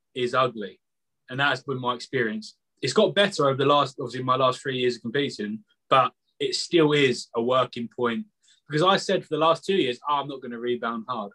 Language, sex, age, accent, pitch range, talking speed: English, male, 20-39, British, 125-180 Hz, 220 wpm